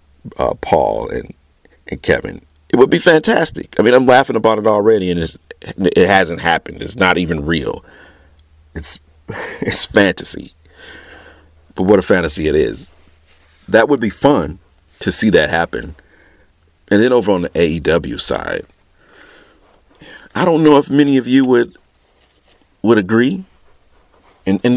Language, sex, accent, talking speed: English, male, American, 150 wpm